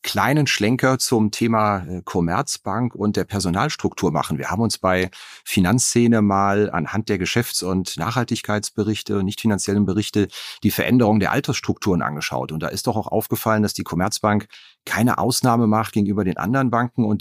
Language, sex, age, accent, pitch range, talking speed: German, male, 40-59, German, 90-115 Hz, 160 wpm